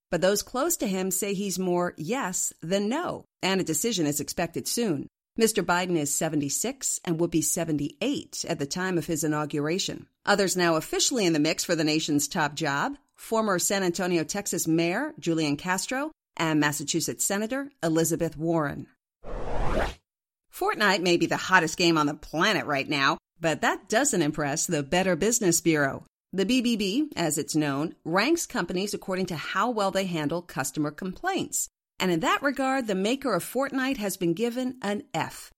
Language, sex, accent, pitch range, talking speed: English, female, American, 160-225 Hz, 170 wpm